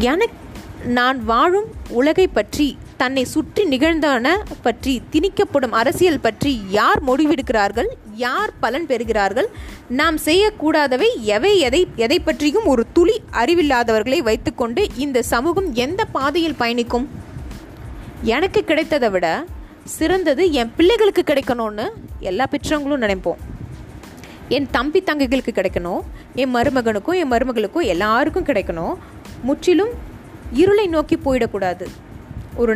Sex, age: female, 20-39